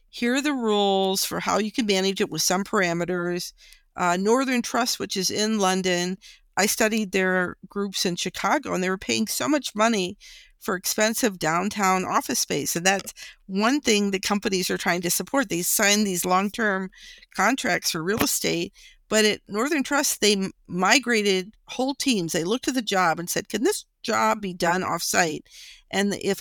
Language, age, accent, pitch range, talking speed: English, 50-69, American, 180-230 Hz, 180 wpm